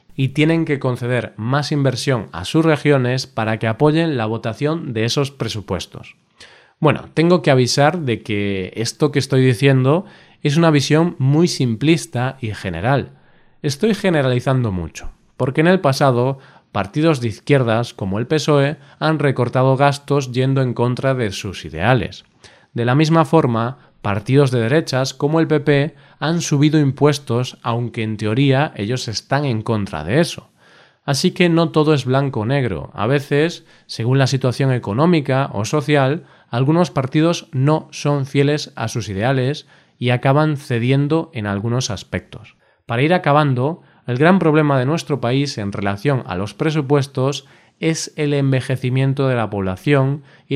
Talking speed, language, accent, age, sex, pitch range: 155 wpm, Spanish, Spanish, 20-39, male, 120-150 Hz